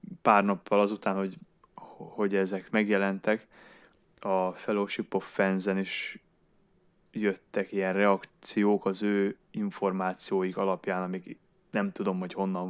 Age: 20-39